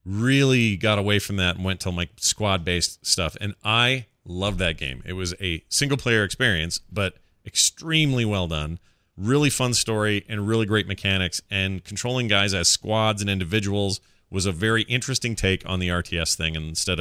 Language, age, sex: English, 30-49, male